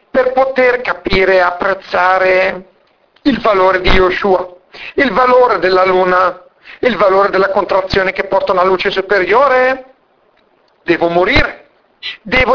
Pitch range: 185-260 Hz